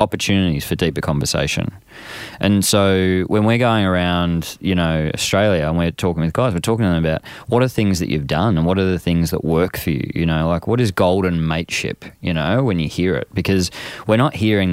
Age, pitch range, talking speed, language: 20-39, 85-100 Hz, 225 wpm, English